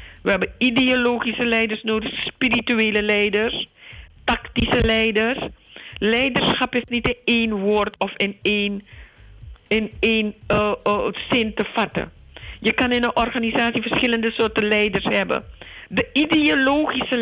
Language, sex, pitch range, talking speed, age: Dutch, female, 195-240 Hz, 125 wpm, 50-69